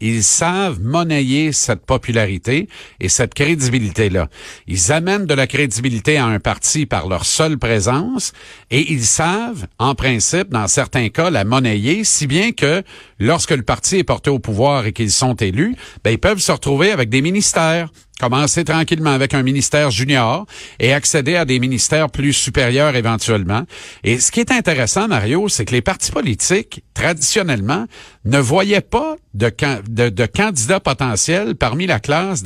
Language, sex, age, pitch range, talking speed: French, male, 50-69, 120-170 Hz, 165 wpm